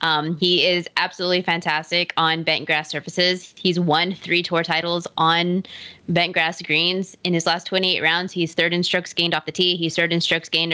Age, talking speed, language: 20-39, 200 wpm, English